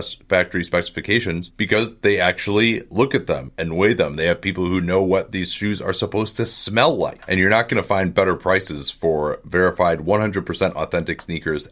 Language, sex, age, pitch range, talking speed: English, male, 30-49, 90-115 Hz, 190 wpm